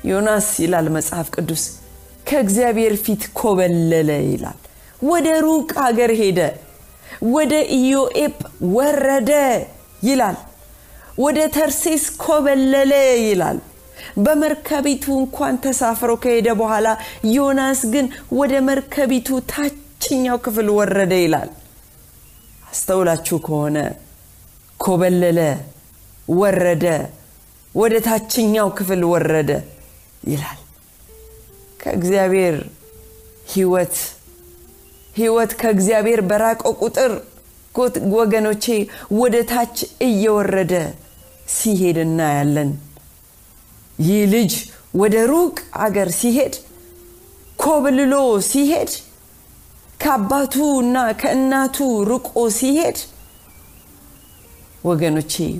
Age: 40-59